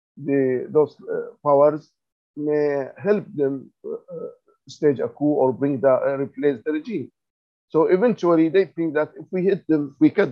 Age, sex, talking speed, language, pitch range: 50-69, male, 170 wpm, English, 135-185 Hz